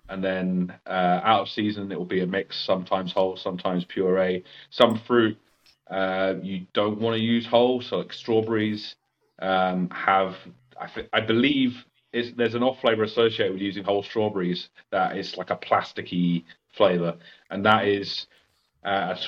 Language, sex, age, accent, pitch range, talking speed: English, male, 30-49, British, 90-110 Hz, 165 wpm